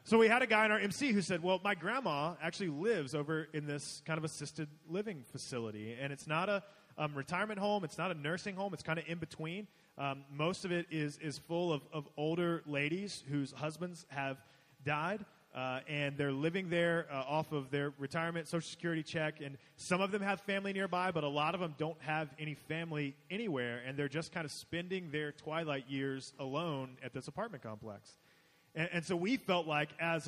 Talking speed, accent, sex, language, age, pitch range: 210 wpm, American, male, English, 30-49, 145-190 Hz